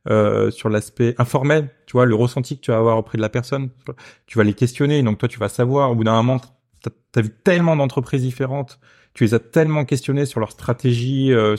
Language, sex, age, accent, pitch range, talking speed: French, male, 30-49, French, 115-135 Hz, 230 wpm